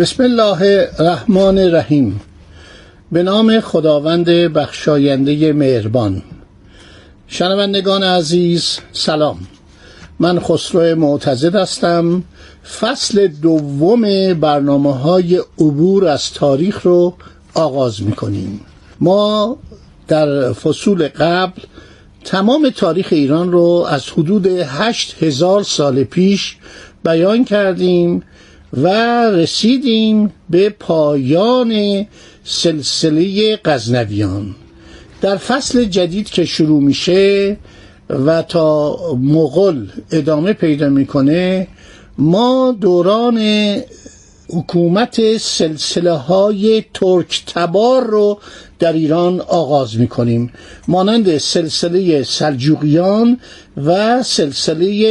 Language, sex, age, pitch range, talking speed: Persian, male, 60-79, 145-195 Hz, 85 wpm